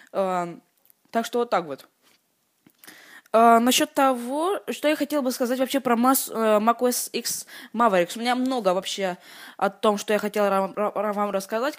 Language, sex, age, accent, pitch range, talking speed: Russian, female, 20-39, native, 195-250 Hz, 160 wpm